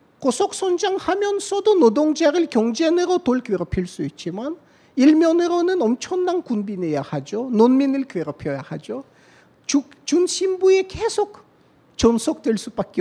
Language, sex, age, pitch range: Korean, male, 40-59, 230-380 Hz